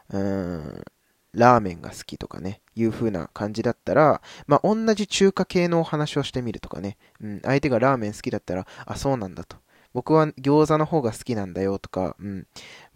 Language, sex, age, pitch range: Japanese, male, 20-39, 100-140 Hz